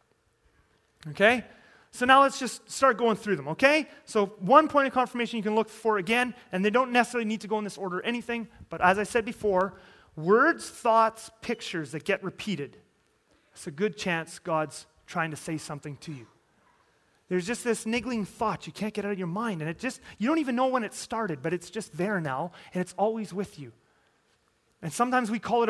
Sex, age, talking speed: male, 30-49, 215 wpm